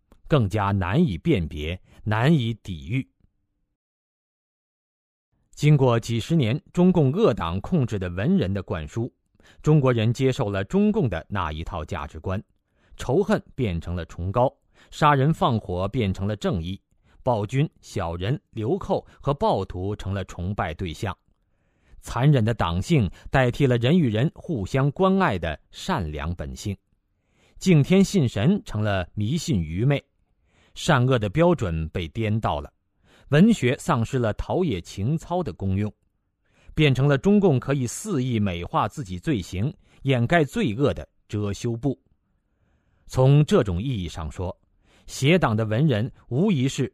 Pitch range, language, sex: 95-140 Hz, Chinese, male